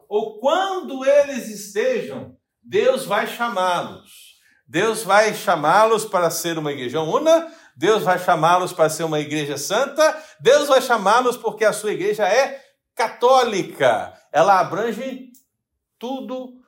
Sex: male